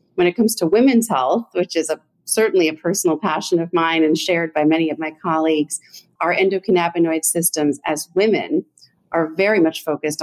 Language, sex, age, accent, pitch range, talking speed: English, female, 40-59, American, 155-170 Hz, 175 wpm